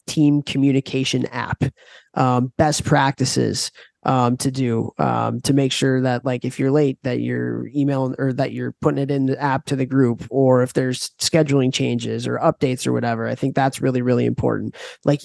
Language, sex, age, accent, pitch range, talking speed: English, male, 20-39, American, 130-150 Hz, 190 wpm